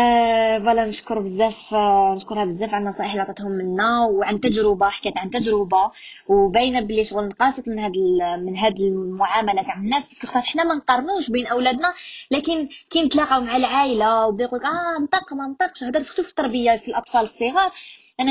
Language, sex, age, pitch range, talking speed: Arabic, female, 20-39, 220-290 Hz, 170 wpm